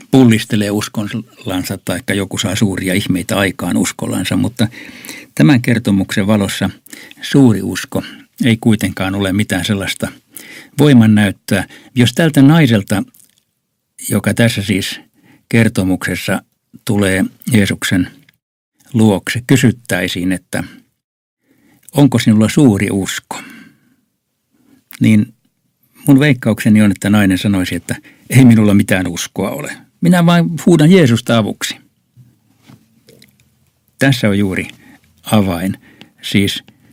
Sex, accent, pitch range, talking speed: male, native, 100-120 Hz, 95 wpm